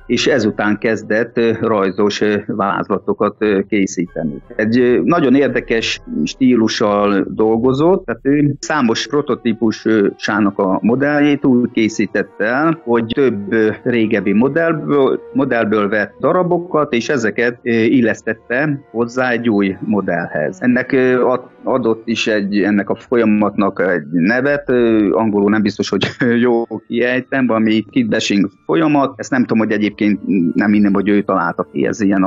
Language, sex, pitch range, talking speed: Hungarian, male, 105-125 Hz, 120 wpm